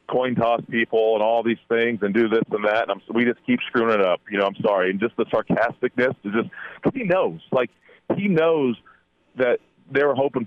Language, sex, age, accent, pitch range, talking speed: English, male, 40-59, American, 105-130 Hz, 230 wpm